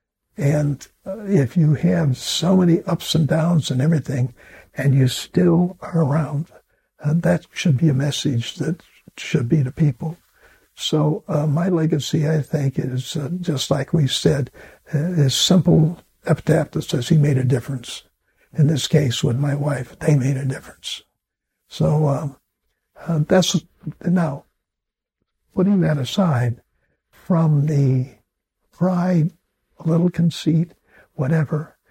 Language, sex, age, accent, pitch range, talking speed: English, male, 60-79, American, 135-165 Hz, 135 wpm